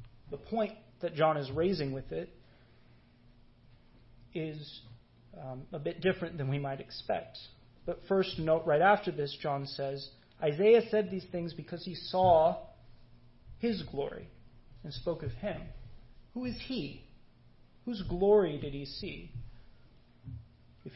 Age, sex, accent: 30-49, male, American